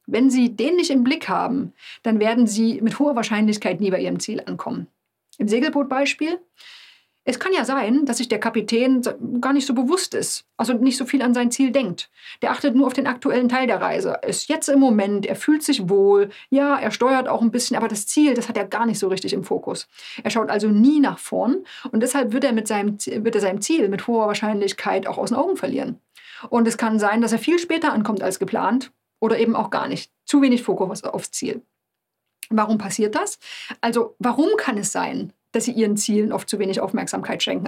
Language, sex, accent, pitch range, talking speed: German, female, German, 215-275 Hz, 215 wpm